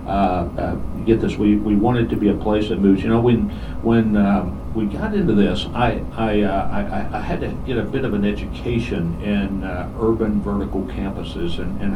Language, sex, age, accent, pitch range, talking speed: English, male, 60-79, American, 90-110 Hz, 210 wpm